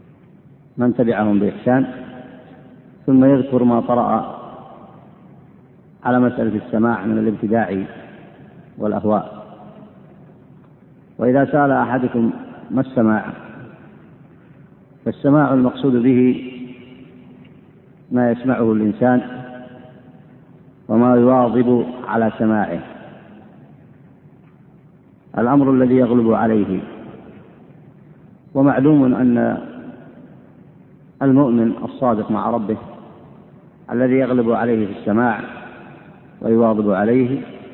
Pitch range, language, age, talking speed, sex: 115-130 Hz, Arabic, 50-69, 70 wpm, male